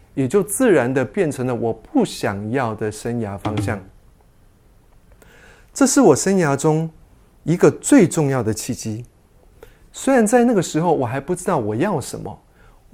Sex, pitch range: male, 115-180 Hz